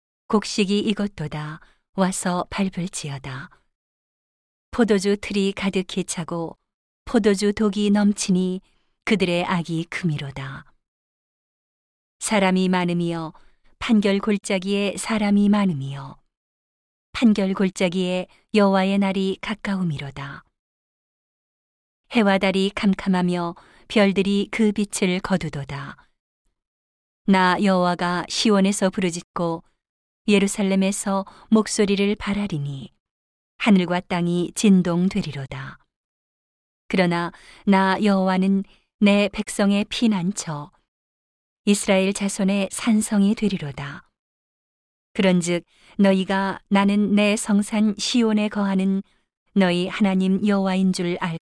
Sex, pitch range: female, 175-205 Hz